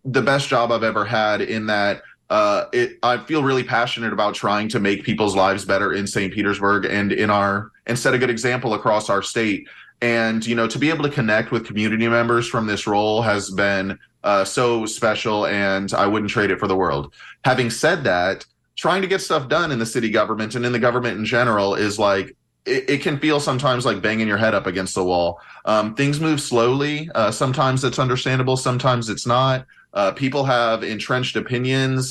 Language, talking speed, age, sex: English, 205 wpm, 20-39, male